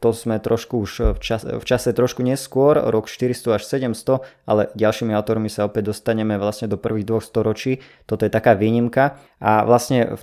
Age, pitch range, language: 20-39, 110-130 Hz, Slovak